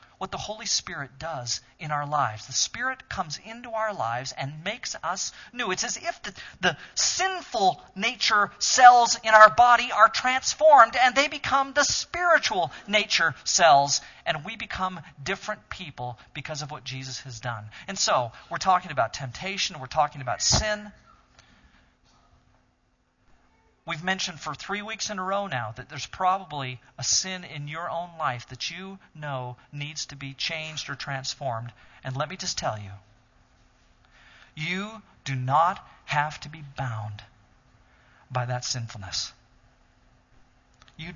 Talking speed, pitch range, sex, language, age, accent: 150 wpm, 125-200 Hz, male, English, 40-59, American